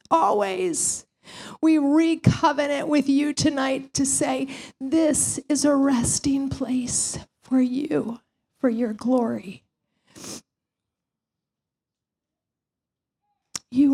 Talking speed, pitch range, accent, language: 80 wpm, 240-285 Hz, American, English